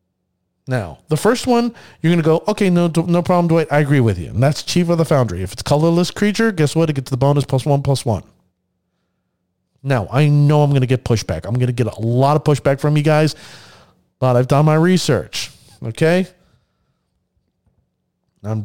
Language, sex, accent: English, male, American